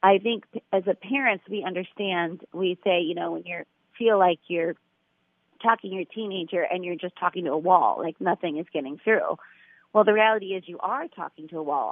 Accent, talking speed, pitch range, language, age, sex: American, 210 wpm, 175-220 Hz, English, 30-49, female